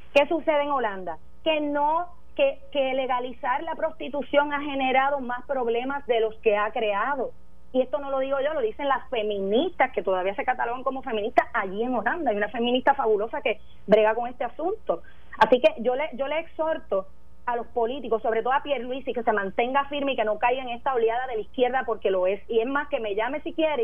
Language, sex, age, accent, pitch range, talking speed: Spanish, female, 30-49, American, 220-280 Hz, 225 wpm